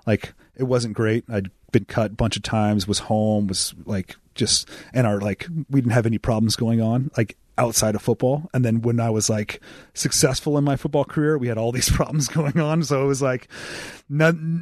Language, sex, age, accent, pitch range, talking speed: English, male, 30-49, American, 100-125 Hz, 220 wpm